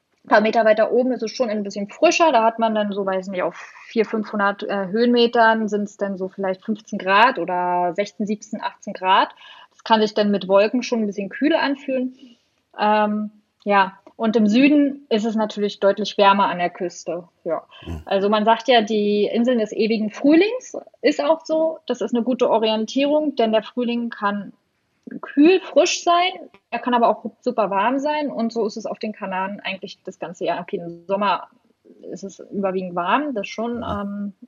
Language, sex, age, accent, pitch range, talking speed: German, female, 20-39, German, 195-245 Hz, 195 wpm